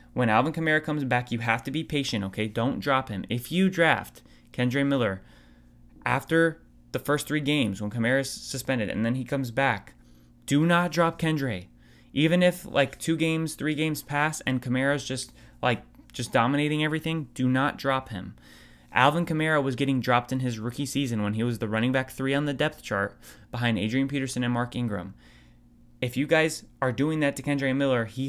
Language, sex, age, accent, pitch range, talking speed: English, male, 20-39, American, 115-145 Hz, 195 wpm